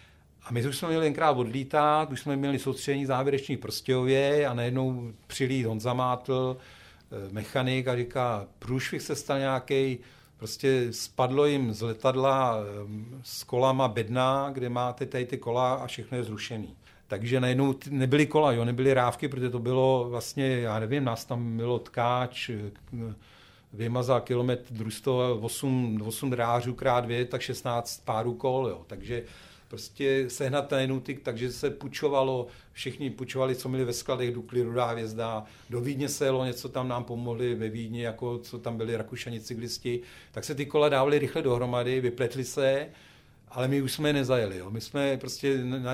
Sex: male